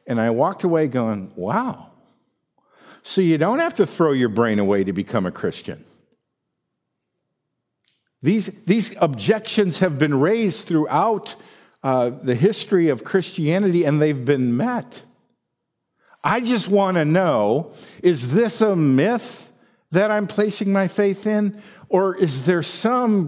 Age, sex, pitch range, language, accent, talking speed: 50-69, male, 140-195 Hz, English, American, 140 wpm